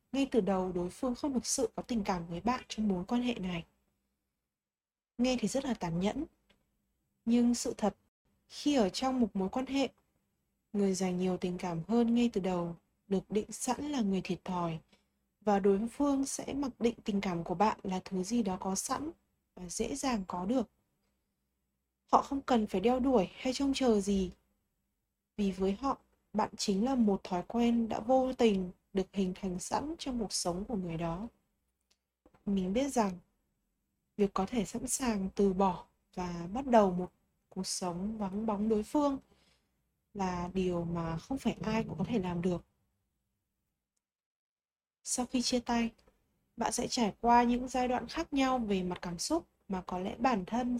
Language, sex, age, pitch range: Vietnamese, female, 20-39, 185-245 Hz